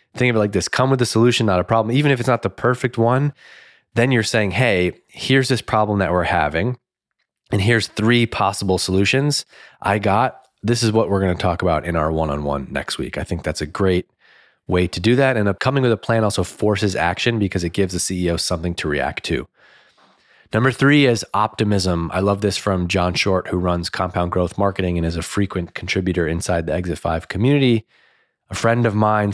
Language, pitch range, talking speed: English, 90-110 Hz, 210 wpm